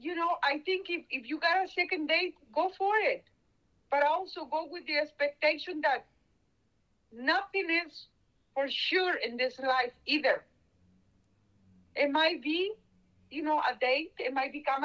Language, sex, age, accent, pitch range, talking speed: English, female, 50-69, Indian, 225-330 Hz, 160 wpm